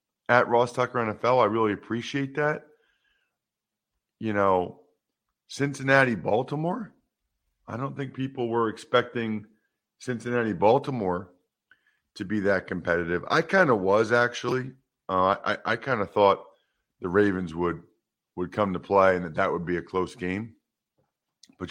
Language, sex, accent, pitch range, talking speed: English, male, American, 95-125 Hz, 140 wpm